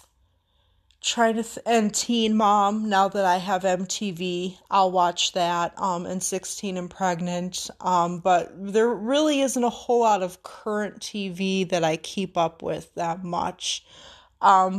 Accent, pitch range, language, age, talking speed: American, 180-215 Hz, English, 30-49, 145 wpm